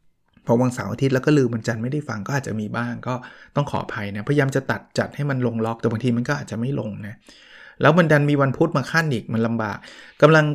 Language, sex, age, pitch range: Thai, male, 20-39, 115-140 Hz